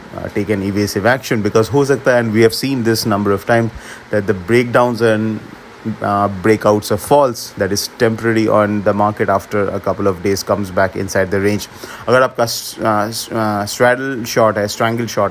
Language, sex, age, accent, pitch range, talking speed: English, male, 30-49, Indian, 100-115 Hz, 185 wpm